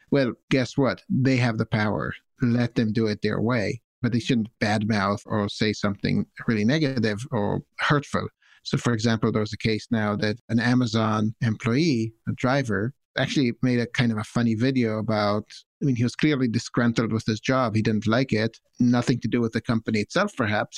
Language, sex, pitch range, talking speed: English, male, 110-135 Hz, 195 wpm